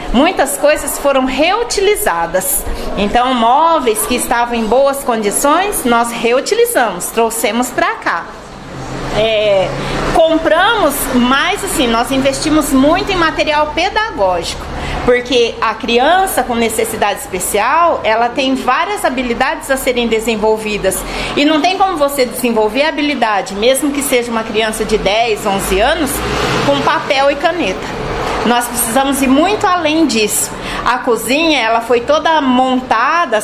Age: 40-59